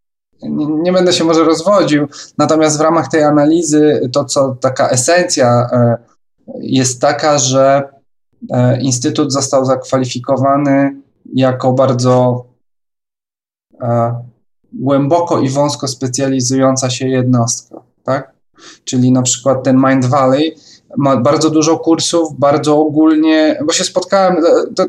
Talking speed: 105 wpm